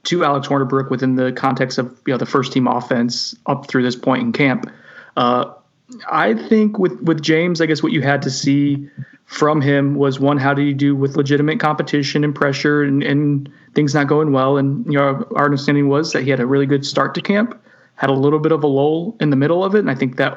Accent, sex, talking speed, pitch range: American, male, 240 wpm, 130-155 Hz